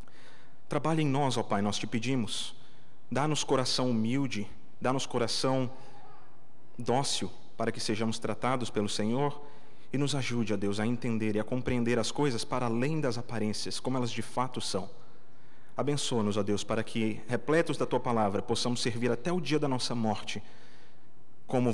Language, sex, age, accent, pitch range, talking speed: Portuguese, male, 40-59, Brazilian, 115-160 Hz, 165 wpm